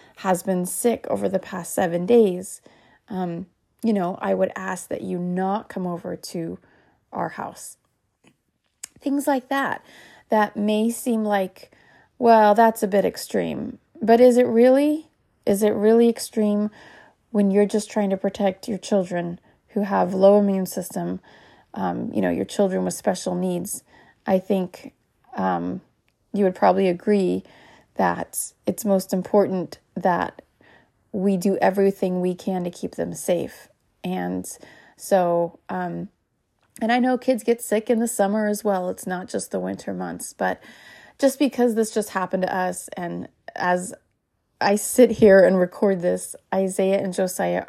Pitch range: 180-215 Hz